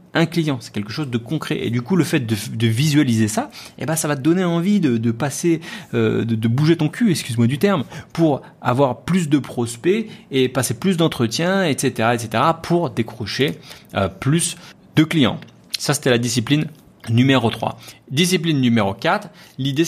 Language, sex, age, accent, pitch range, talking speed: French, male, 30-49, French, 110-155 Hz, 185 wpm